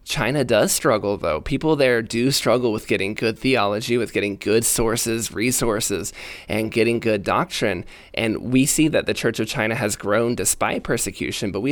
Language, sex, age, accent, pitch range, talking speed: English, male, 20-39, American, 105-130 Hz, 180 wpm